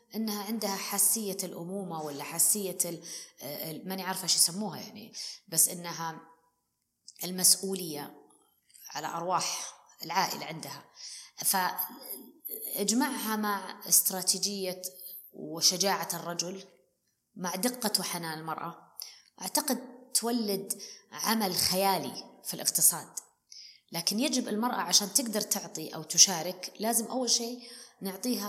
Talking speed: 95 wpm